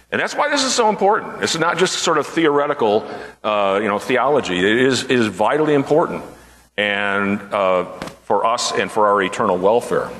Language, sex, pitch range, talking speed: English, male, 110-165 Hz, 170 wpm